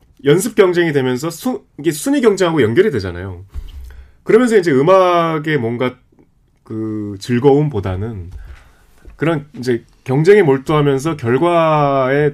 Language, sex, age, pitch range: Korean, male, 30-49, 100-155 Hz